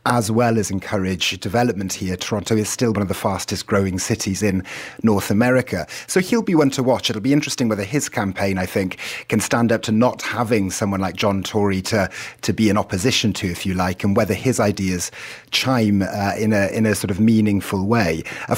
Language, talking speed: English, 210 wpm